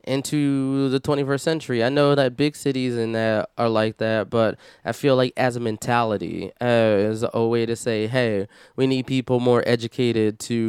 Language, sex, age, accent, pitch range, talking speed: English, male, 20-39, American, 115-130 Hz, 190 wpm